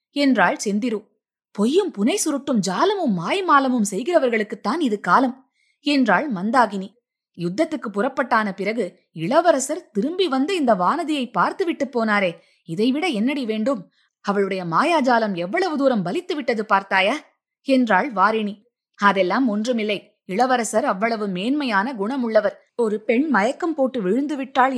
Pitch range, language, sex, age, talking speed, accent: 205-270 Hz, Tamil, female, 20-39, 110 wpm, native